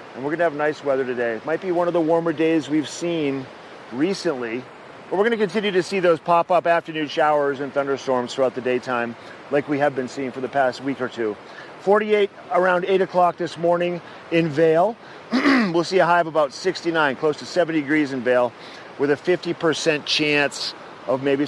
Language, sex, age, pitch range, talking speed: English, male, 40-59, 135-170 Hz, 200 wpm